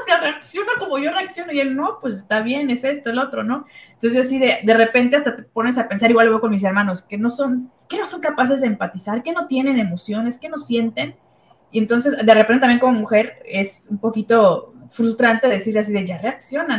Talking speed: 230 wpm